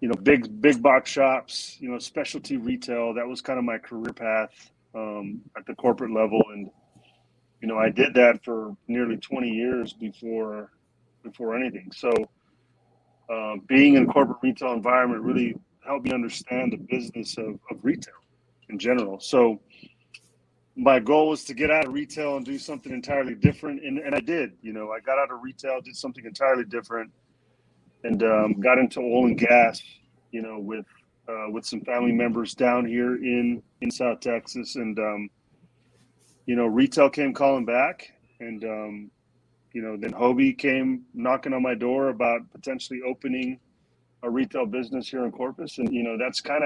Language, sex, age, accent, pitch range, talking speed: English, male, 30-49, American, 115-135 Hz, 175 wpm